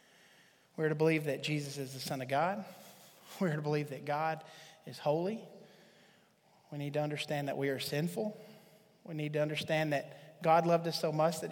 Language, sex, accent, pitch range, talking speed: English, male, American, 155-190 Hz, 190 wpm